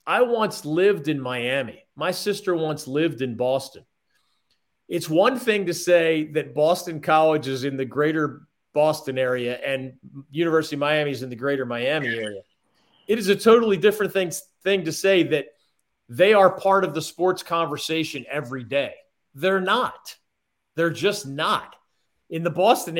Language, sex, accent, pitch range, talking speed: English, male, American, 145-180 Hz, 160 wpm